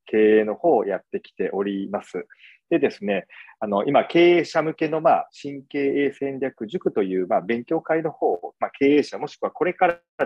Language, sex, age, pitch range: Japanese, male, 40-59, 115-175 Hz